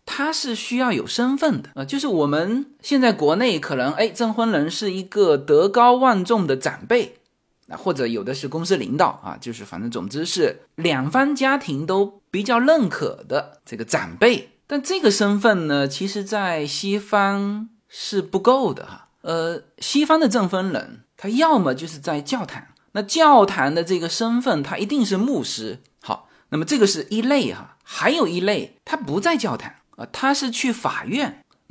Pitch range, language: 165-260 Hz, Chinese